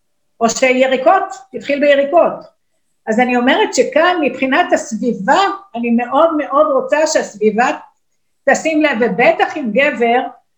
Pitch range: 245-295 Hz